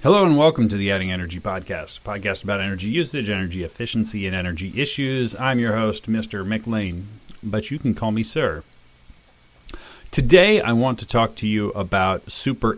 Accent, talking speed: American, 180 wpm